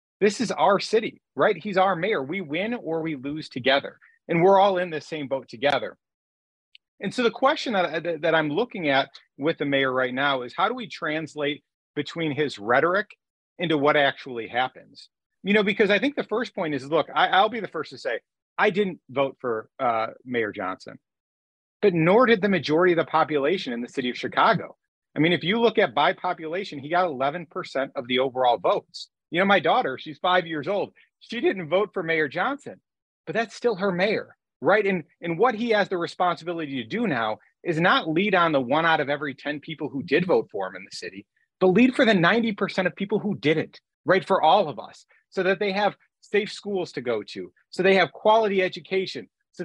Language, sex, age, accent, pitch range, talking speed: English, male, 30-49, American, 145-200 Hz, 215 wpm